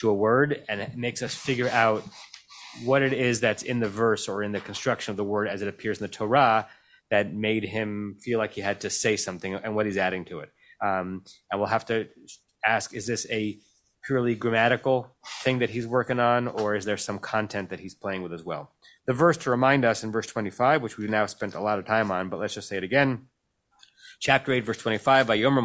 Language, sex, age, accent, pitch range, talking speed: English, male, 30-49, American, 105-130 Hz, 235 wpm